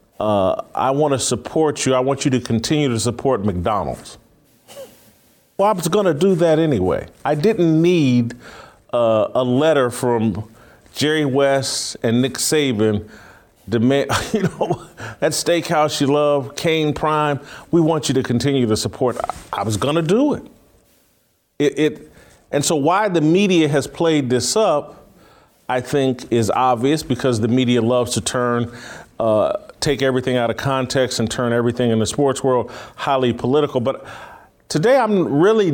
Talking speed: 160 wpm